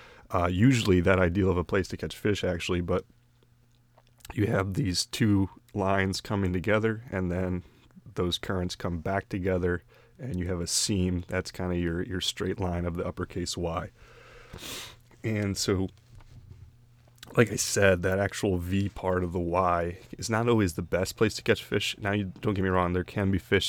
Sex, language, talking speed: male, English, 185 wpm